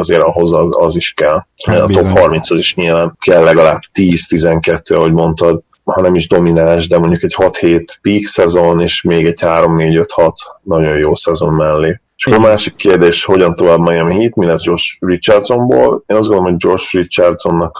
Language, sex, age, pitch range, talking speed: Hungarian, male, 30-49, 85-90 Hz, 180 wpm